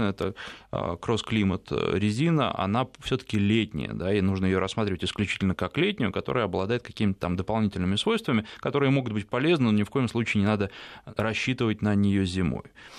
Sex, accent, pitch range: male, native, 100-135 Hz